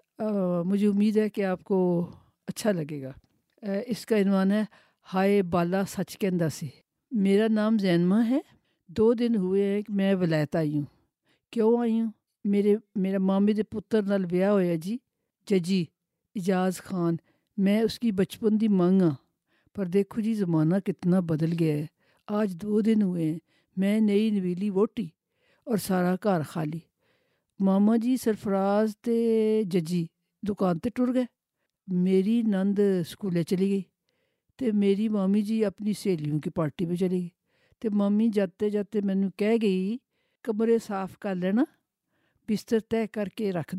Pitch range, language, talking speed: 180-215 Hz, Urdu, 155 wpm